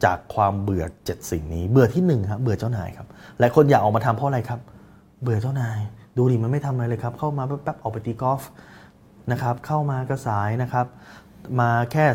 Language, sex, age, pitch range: Thai, male, 20-39, 100-130 Hz